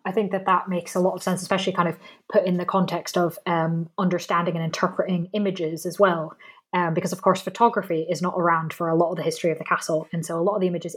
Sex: female